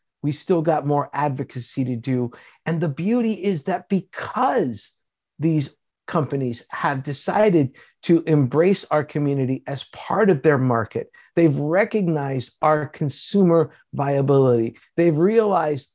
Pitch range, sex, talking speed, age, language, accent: 130-175 Hz, male, 125 wpm, 50-69, English, American